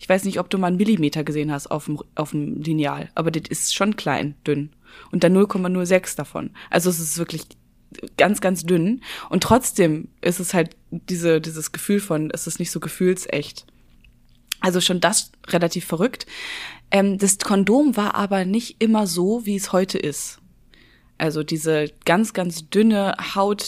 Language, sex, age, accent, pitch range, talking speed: German, female, 20-39, German, 160-195 Hz, 175 wpm